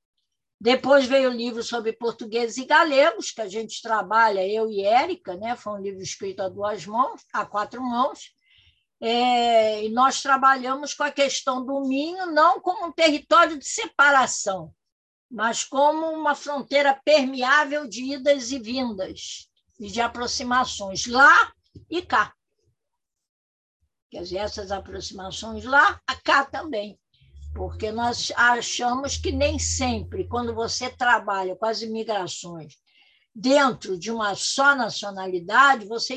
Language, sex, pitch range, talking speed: Portuguese, female, 205-275 Hz, 135 wpm